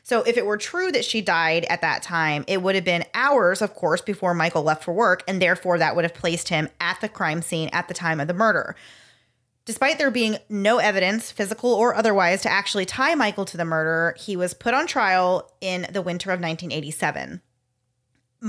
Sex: female